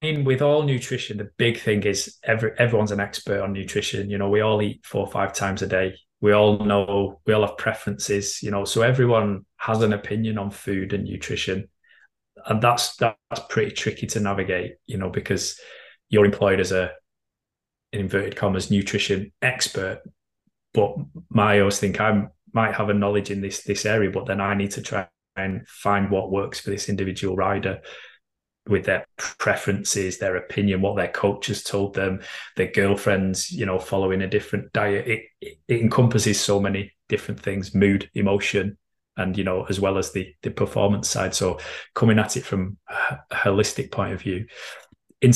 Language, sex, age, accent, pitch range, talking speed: English, male, 20-39, British, 100-110 Hz, 180 wpm